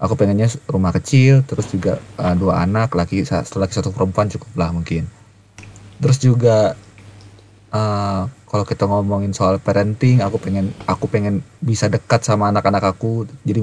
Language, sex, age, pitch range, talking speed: Indonesian, male, 20-39, 105-130 Hz, 155 wpm